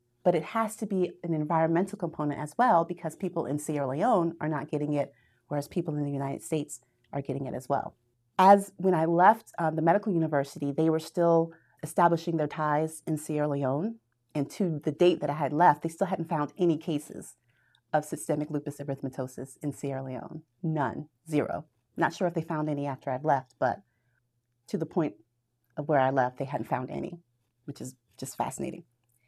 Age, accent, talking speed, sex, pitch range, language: 30-49, American, 195 wpm, female, 145-175 Hz, English